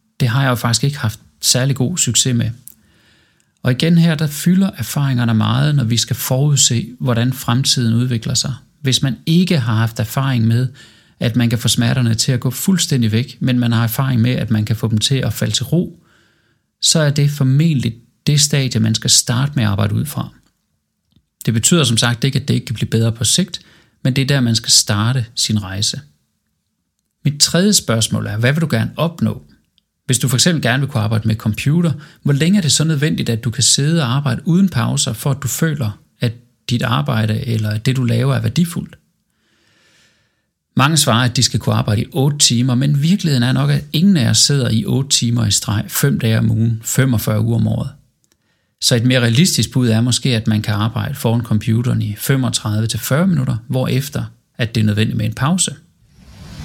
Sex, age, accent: male, 30-49, native